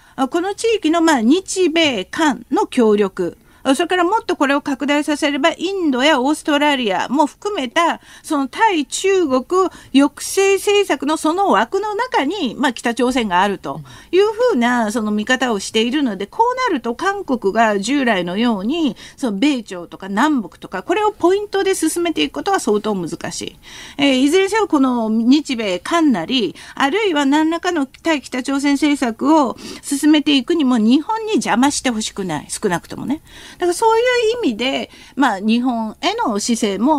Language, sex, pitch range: Japanese, female, 245-360 Hz